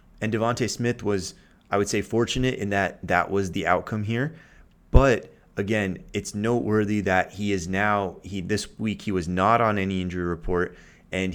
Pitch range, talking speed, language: 95-115 Hz, 180 wpm, English